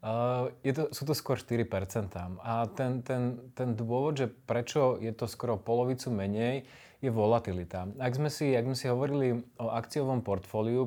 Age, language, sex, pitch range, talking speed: 20-39, Slovak, male, 110-125 Hz, 165 wpm